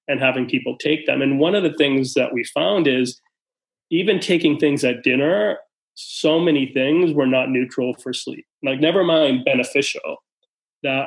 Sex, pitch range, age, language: male, 125-155 Hz, 30-49, English